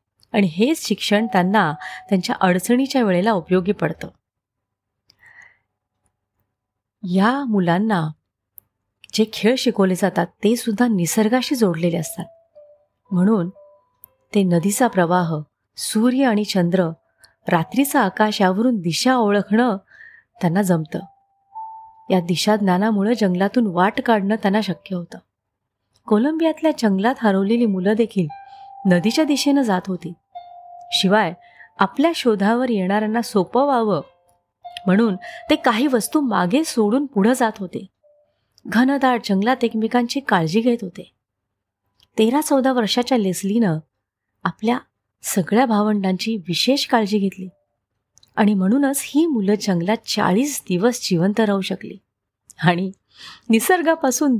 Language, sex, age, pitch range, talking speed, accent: Marathi, female, 30-49, 175-245 Hz, 105 wpm, native